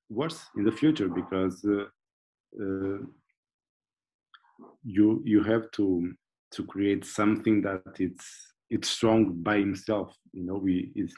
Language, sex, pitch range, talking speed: English, male, 95-110 Hz, 130 wpm